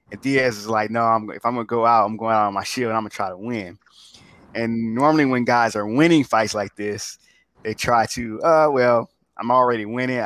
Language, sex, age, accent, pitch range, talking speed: English, male, 20-39, American, 105-125 Hz, 245 wpm